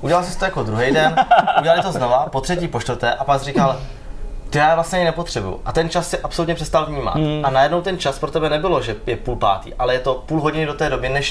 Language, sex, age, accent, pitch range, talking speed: Czech, male, 20-39, native, 110-150 Hz, 260 wpm